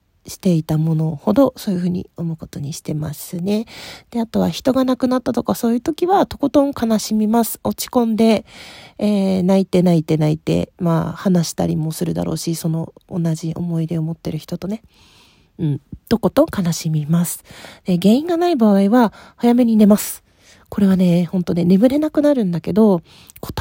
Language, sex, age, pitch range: Japanese, female, 40-59, 170-230 Hz